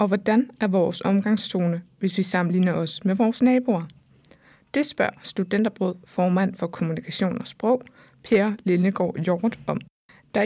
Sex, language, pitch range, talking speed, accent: female, Danish, 185-225 Hz, 145 wpm, native